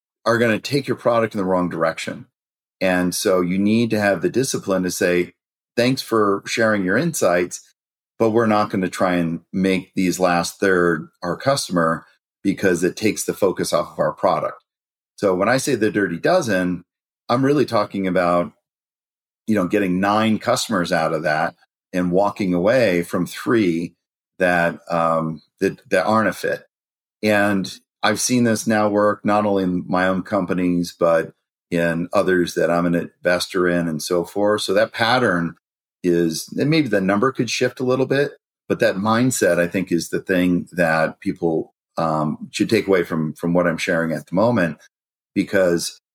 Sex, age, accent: male, 40-59, American